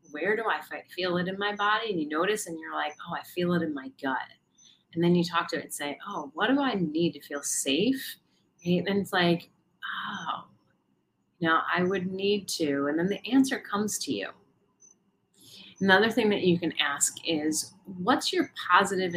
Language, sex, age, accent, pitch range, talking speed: English, female, 30-49, American, 165-205 Hz, 195 wpm